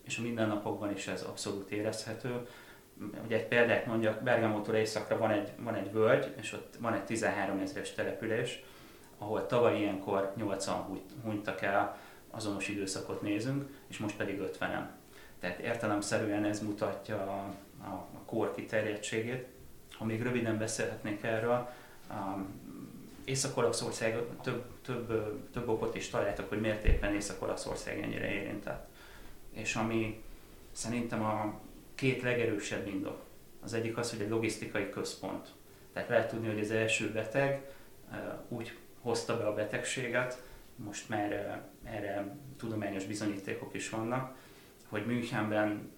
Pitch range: 105-115 Hz